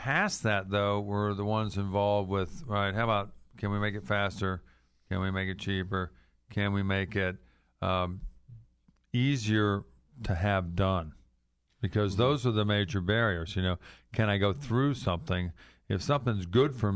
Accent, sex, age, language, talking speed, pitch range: American, male, 50-69, English, 165 wpm, 95-105 Hz